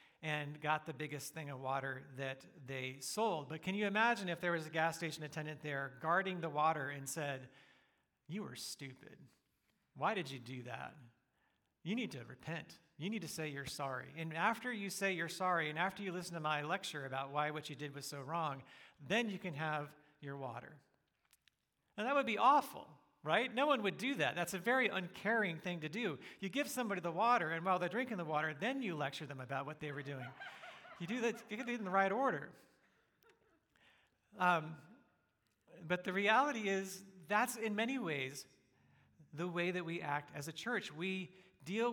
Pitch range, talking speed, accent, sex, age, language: 150-195 Hz, 200 wpm, American, male, 40-59, English